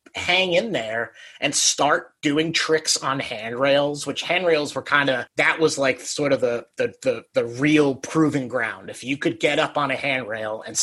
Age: 30-49